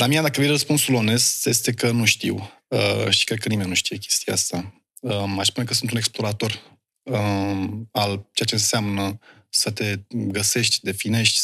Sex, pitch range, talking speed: male, 110-125 Hz, 190 wpm